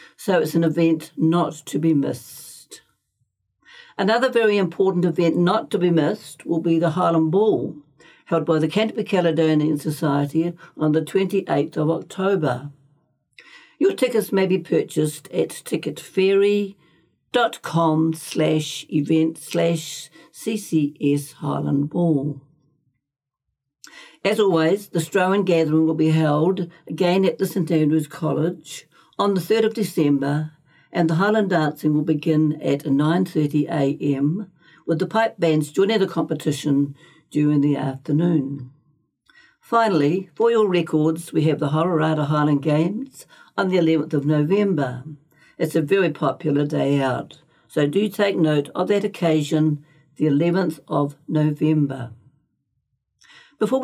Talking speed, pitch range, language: 125 wpm, 150-190 Hz, English